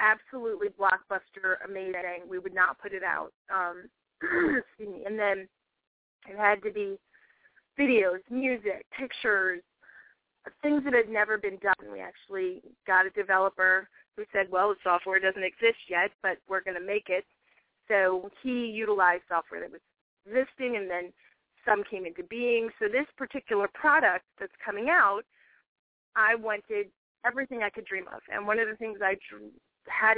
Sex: female